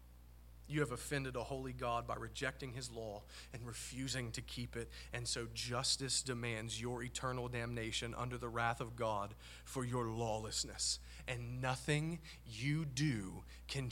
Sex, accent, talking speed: male, American, 150 wpm